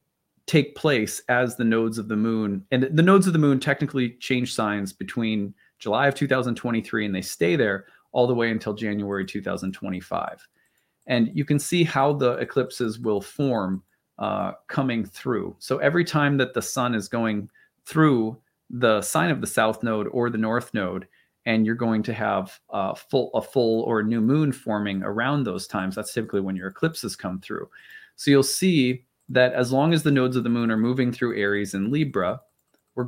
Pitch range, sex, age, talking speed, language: 105-135 Hz, male, 40-59, 190 wpm, English